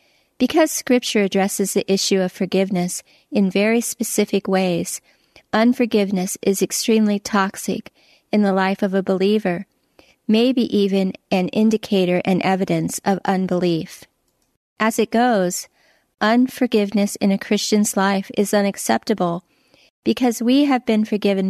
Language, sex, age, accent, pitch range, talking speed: English, female, 40-59, American, 190-225 Hz, 125 wpm